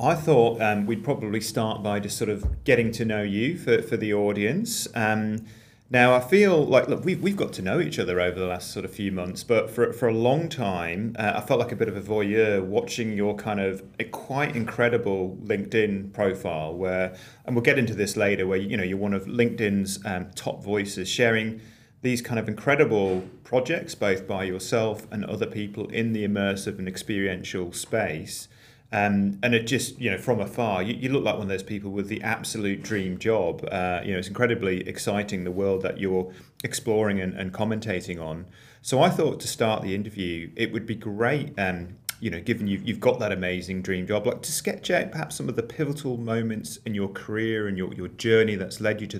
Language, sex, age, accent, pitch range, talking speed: English, male, 30-49, British, 95-115 Hz, 215 wpm